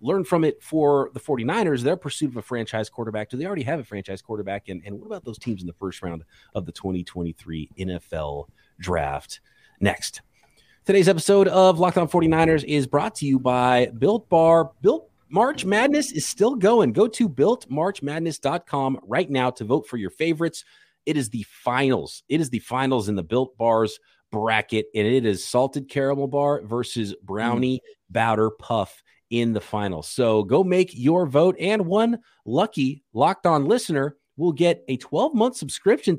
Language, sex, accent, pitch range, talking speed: English, male, American, 110-180 Hz, 175 wpm